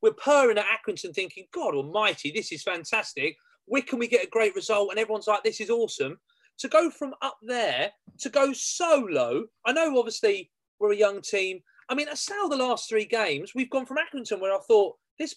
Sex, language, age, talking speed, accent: male, English, 30-49, 210 wpm, British